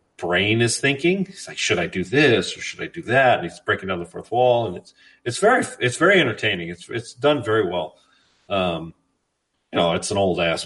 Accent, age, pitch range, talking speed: American, 40-59, 90-120 Hz, 225 wpm